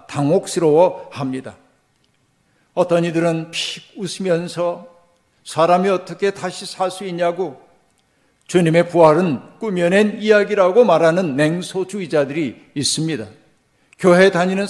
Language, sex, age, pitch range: Korean, male, 50-69, 155-190 Hz